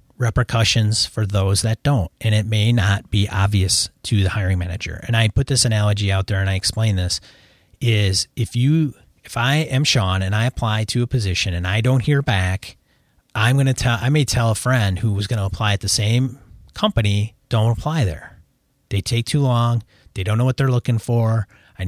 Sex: male